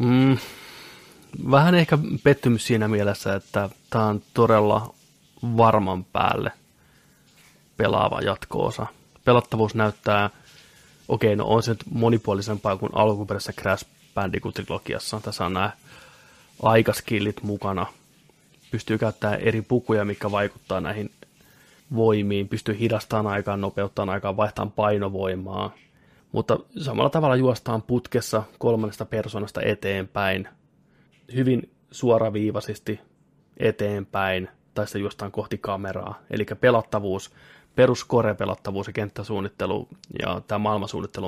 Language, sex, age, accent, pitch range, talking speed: Finnish, male, 20-39, native, 105-120 Hz, 105 wpm